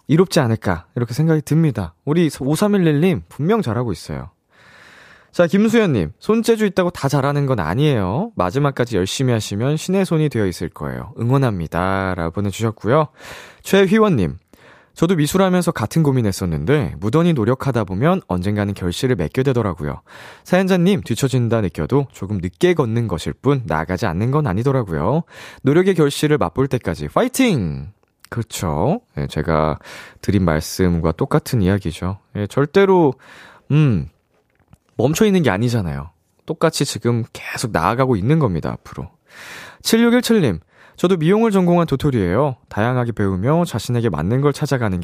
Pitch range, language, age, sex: 100-155 Hz, Korean, 20-39, male